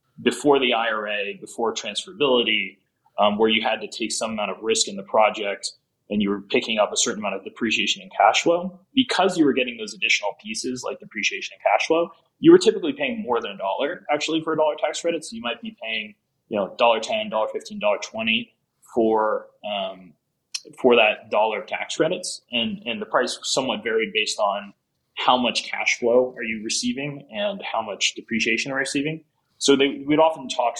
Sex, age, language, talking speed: male, 20-39, English, 195 wpm